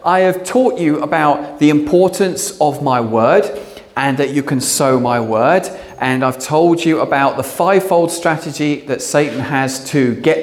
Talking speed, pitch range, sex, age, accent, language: 175 wpm, 120-165 Hz, male, 40-59, British, English